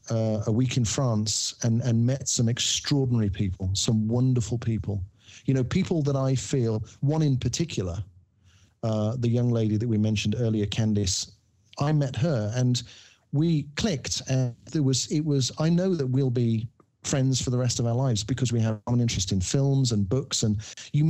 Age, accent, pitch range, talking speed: 40-59, British, 110-135 Hz, 190 wpm